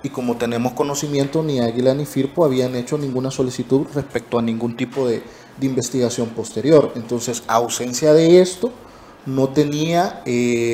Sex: male